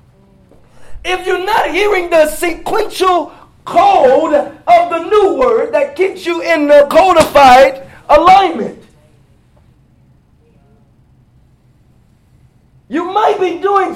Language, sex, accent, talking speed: English, male, American, 95 wpm